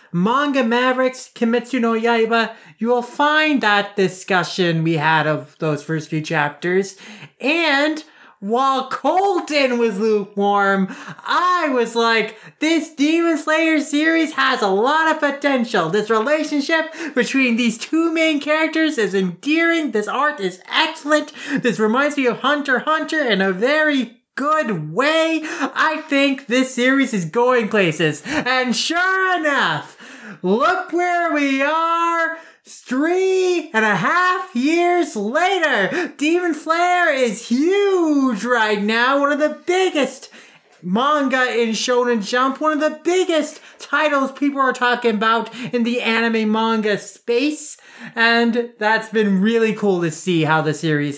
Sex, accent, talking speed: male, American, 135 wpm